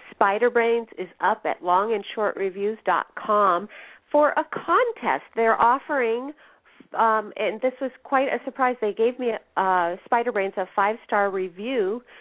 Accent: American